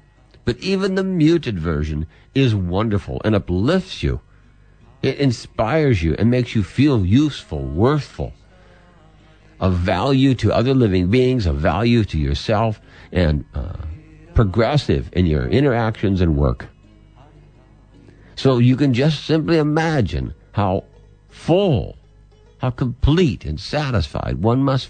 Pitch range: 90-130 Hz